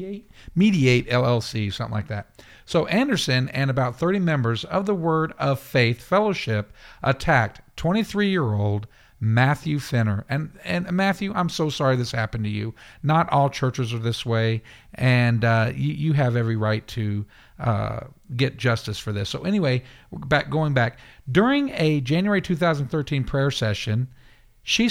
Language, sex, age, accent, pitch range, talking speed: English, male, 50-69, American, 115-170 Hz, 150 wpm